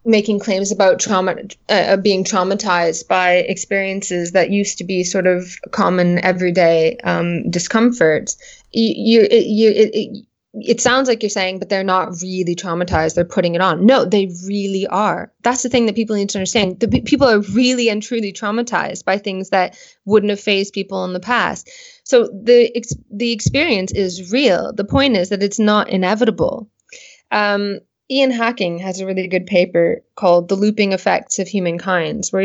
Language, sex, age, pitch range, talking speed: English, female, 20-39, 185-220 Hz, 180 wpm